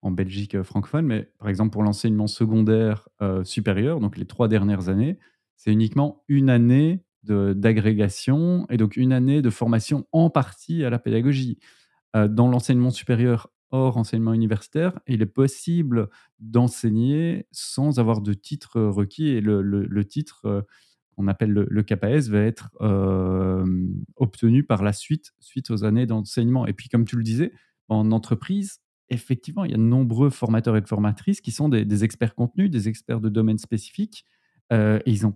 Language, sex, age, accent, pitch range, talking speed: French, male, 30-49, French, 105-130 Hz, 175 wpm